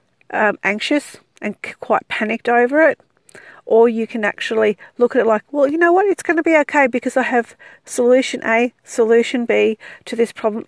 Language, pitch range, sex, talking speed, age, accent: English, 215-260 Hz, female, 190 wpm, 40-59, Australian